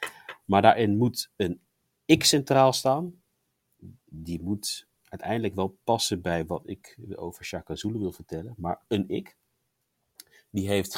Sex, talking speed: male, 130 wpm